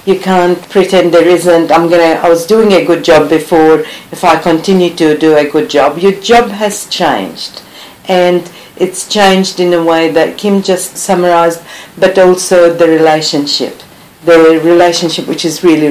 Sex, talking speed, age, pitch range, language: female, 170 wpm, 50-69, 165-195 Hz, English